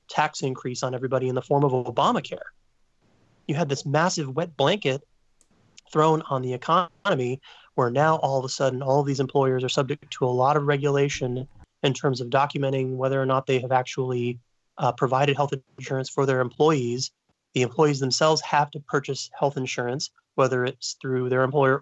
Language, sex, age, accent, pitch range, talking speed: English, male, 30-49, American, 125-145 Hz, 180 wpm